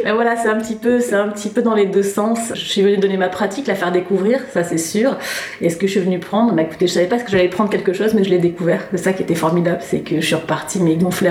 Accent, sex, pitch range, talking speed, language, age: French, female, 170-195 Hz, 310 wpm, French, 30-49